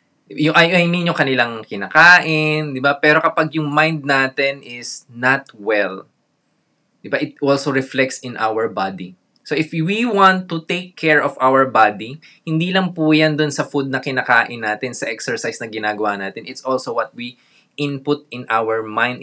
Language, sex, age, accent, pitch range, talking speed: Filipino, male, 20-39, native, 125-155 Hz, 175 wpm